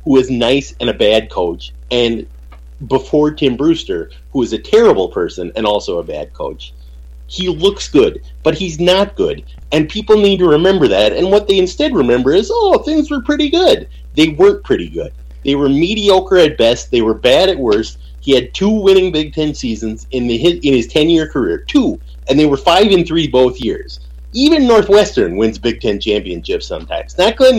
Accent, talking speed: American, 200 wpm